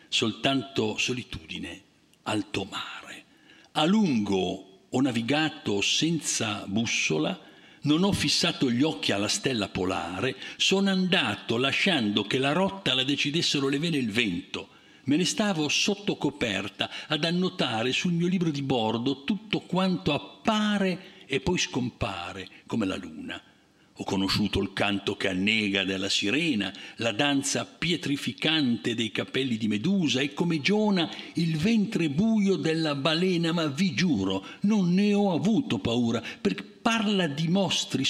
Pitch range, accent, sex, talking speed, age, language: 110-180 Hz, native, male, 135 wpm, 60-79, Italian